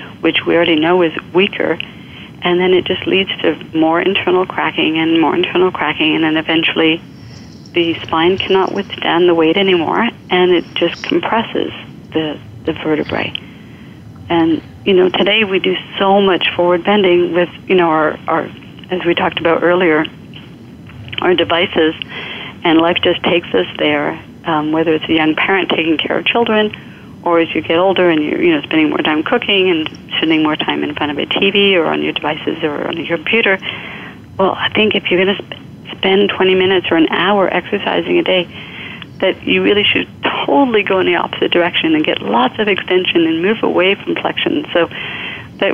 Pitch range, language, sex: 160-195 Hz, English, female